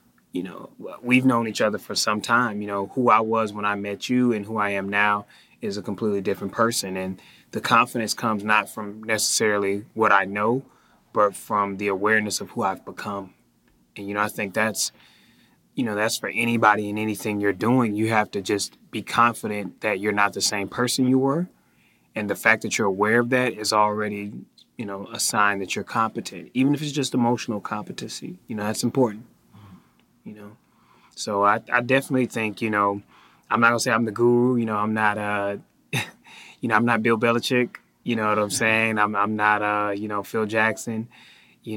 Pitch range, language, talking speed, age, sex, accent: 105-115 Hz, English, 205 wpm, 20-39, male, American